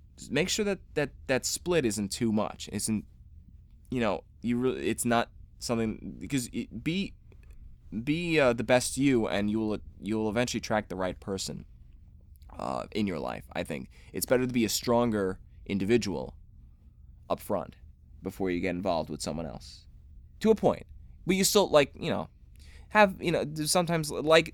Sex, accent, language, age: male, American, English, 20-39